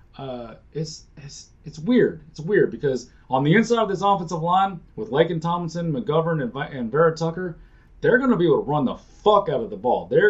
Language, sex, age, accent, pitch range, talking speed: English, male, 30-49, American, 125-170 Hz, 210 wpm